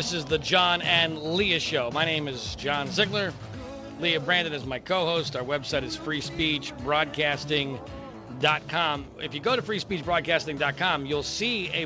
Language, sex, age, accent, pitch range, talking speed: English, male, 40-59, American, 125-160 Hz, 145 wpm